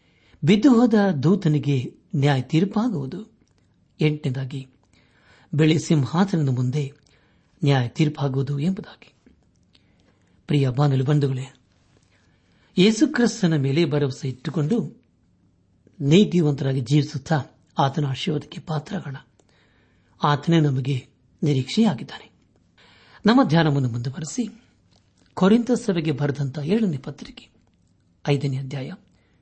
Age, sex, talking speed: 60-79, male, 65 wpm